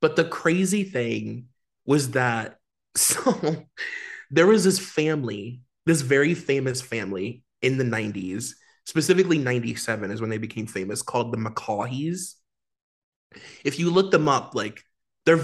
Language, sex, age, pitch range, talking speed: English, male, 20-39, 120-145 Hz, 140 wpm